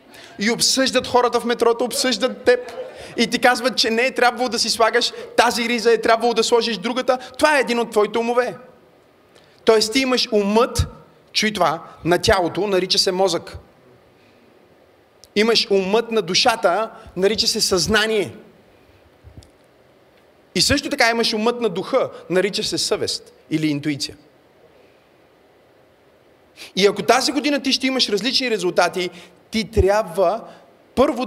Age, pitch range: 30-49, 180-245 Hz